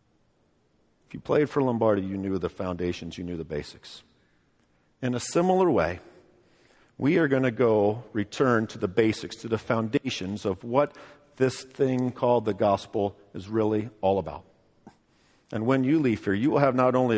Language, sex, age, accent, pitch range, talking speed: English, male, 50-69, American, 105-170 Hz, 175 wpm